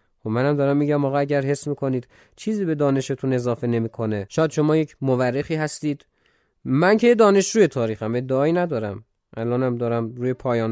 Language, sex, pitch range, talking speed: Persian, male, 125-165 Hz, 160 wpm